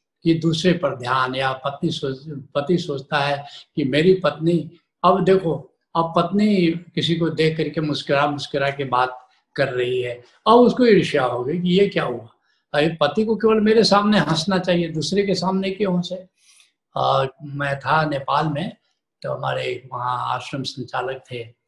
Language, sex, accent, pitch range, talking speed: Hindi, male, native, 150-190 Hz, 160 wpm